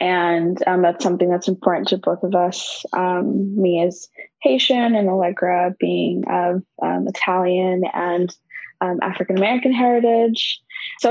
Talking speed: 135 wpm